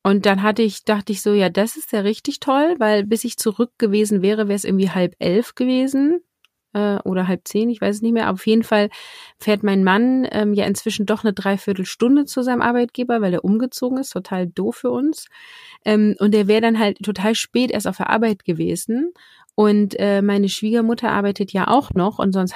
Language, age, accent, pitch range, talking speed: German, 30-49, German, 200-245 Hz, 215 wpm